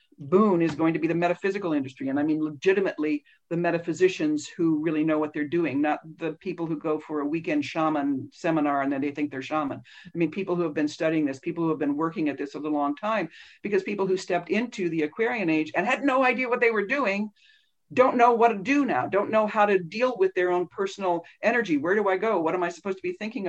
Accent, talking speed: American, 250 wpm